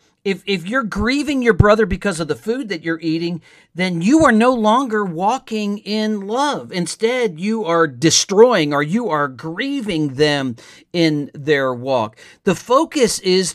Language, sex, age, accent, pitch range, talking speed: English, male, 50-69, American, 160-215 Hz, 160 wpm